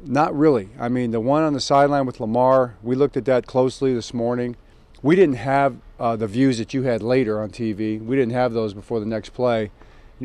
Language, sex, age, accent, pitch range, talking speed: English, male, 40-59, American, 110-130 Hz, 230 wpm